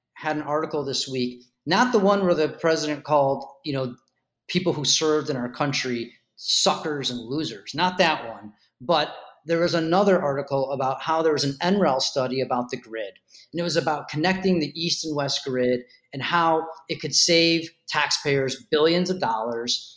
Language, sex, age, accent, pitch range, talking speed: English, male, 40-59, American, 135-180 Hz, 180 wpm